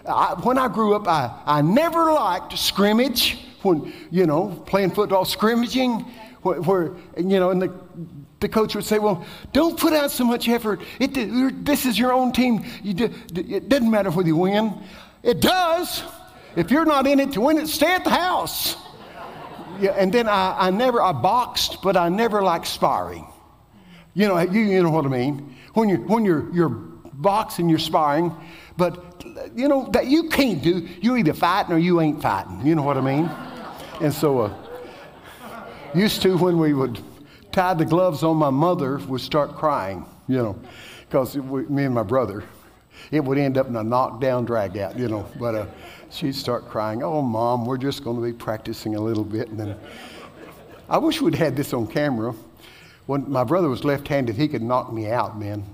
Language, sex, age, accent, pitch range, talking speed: English, male, 60-79, American, 130-215 Hz, 195 wpm